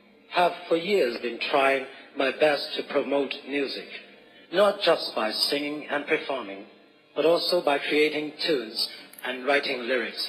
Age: 40-59